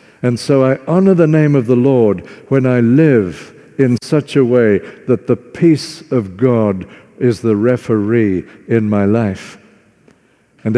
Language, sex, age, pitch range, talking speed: English, male, 60-79, 100-130 Hz, 155 wpm